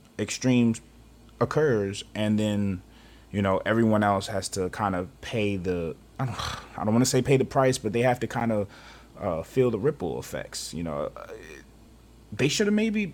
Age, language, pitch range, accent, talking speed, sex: 20-39, English, 110-145 Hz, American, 180 wpm, male